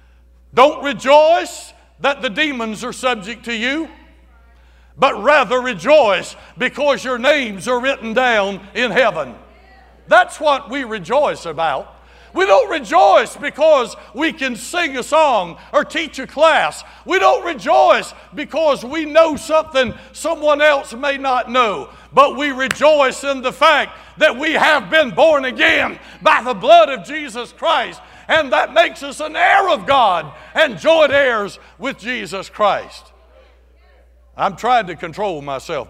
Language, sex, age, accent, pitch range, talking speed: English, male, 60-79, American, 195-280 Hz, 145 wpm